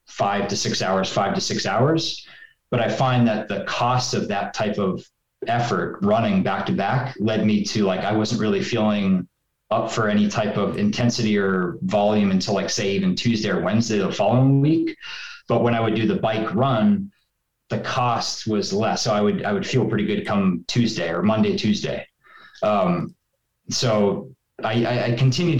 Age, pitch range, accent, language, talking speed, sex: 20-39, 105-130 Hz, American, English, 185 wpm, male